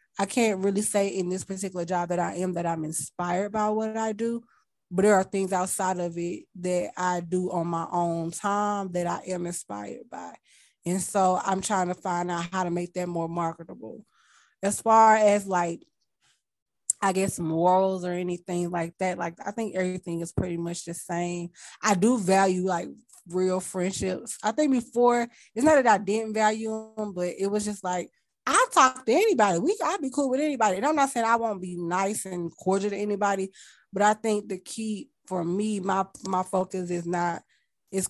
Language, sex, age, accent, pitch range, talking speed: English, female, 20-39, American, 180-215 Hz, 200 wpm